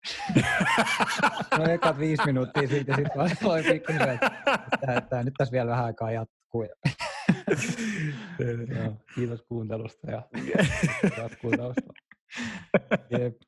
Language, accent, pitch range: Finnish, native, 110-130 Hz